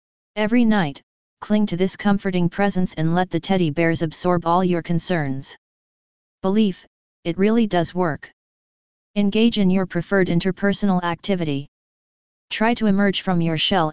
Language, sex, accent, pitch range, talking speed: English, female, American, 165-195 Hz, 140 wpm